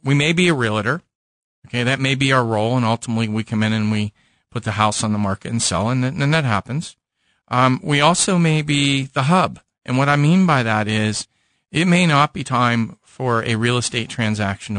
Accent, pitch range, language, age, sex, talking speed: American, 110-135 Hz, English, 40-59, male, 220 wpm